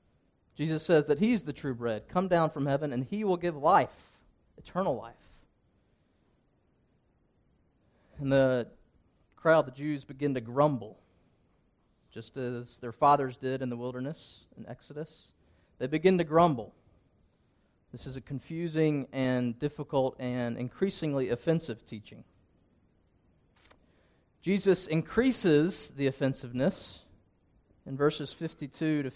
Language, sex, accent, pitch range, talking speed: English, male, American, 115-155 Hz, 120 wpm